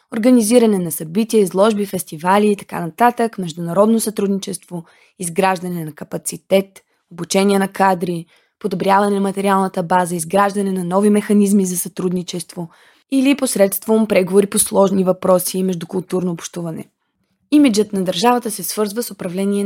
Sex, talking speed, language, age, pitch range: female, 130 wpm, Bulgarian, 20-39, 185-215 Hz